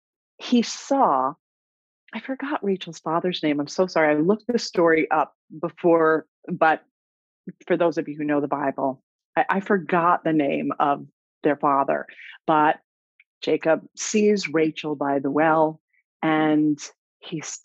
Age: 40-59